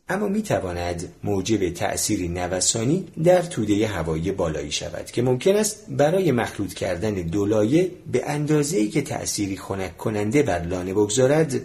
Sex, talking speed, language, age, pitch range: male, 145 wpm, Persian, 40-59, 95-155 Hz